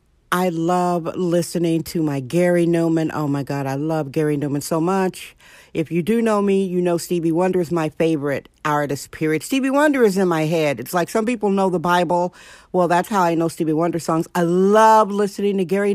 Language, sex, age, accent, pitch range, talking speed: English, female, 50-69, American, 175-220 Hz, 210 wpm